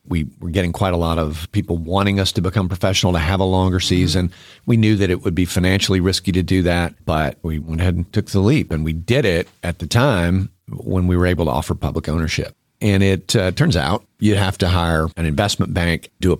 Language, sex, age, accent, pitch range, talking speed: English, male, 50-69, American, 80-105 Hz, 240 wpm